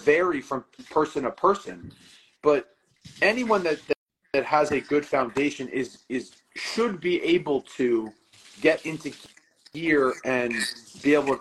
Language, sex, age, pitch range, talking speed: English, male, 40-59, 120-150 Hz, 135 wpm